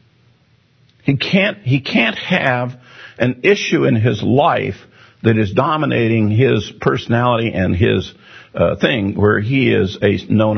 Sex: male